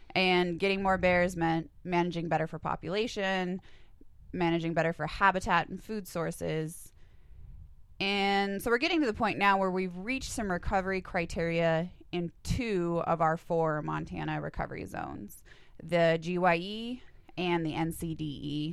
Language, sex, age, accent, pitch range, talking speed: English, female, 20-39, American, 160-190 Hz, 140 wpm